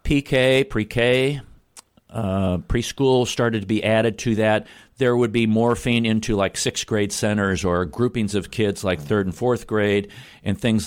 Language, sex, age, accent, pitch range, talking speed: English, male, 50-69, American, 105-125 Hz, 160 wpm